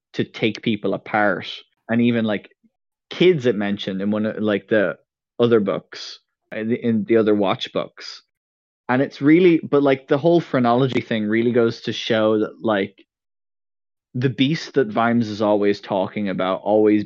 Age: 20-39